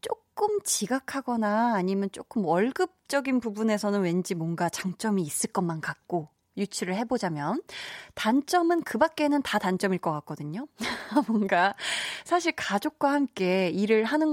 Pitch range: 185-275 Hz